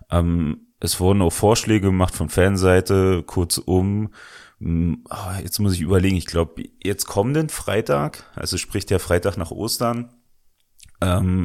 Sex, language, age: male, German, 30-49